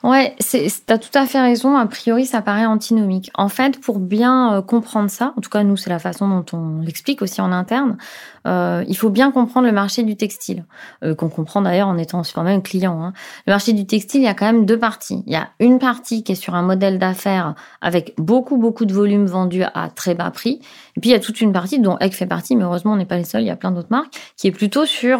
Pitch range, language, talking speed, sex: 190-250 Hz, French, 270 wpm, female